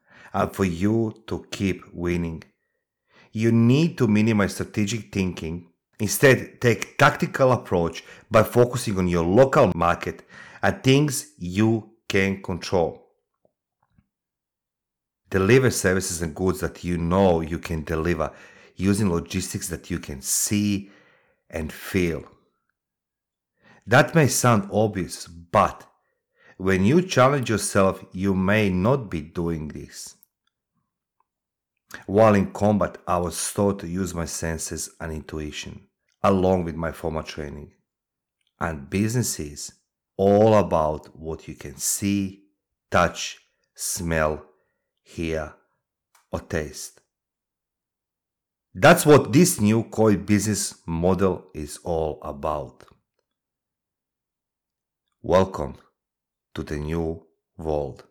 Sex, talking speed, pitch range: male, 110 wpm, 85-105 Hz